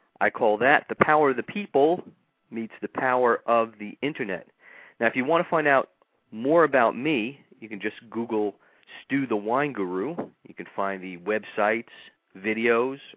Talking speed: 175 wpm